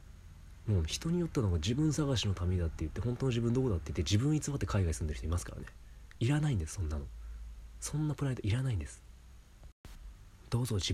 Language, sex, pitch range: Japanese, male, 85-105 Hz